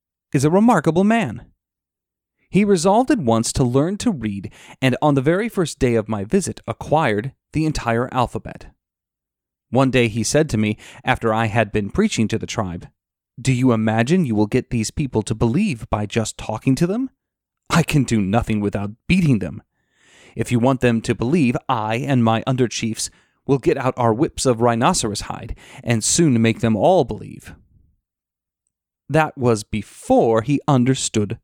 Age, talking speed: 30-49, 170 wpm